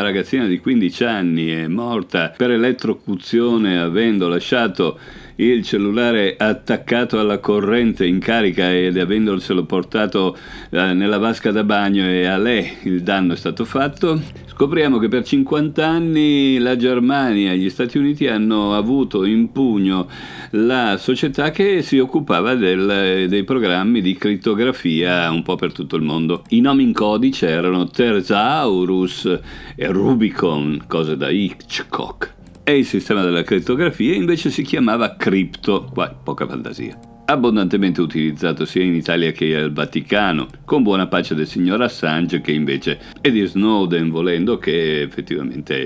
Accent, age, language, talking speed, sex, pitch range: native, 50-69, Italian, 140 wpm, male, 80-105 Hz